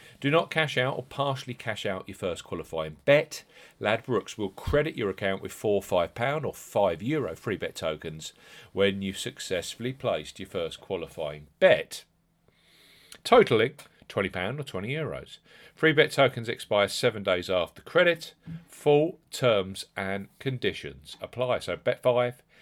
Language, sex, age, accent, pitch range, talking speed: English, male, 40-59, British, 95-140 Hz, 155 wpm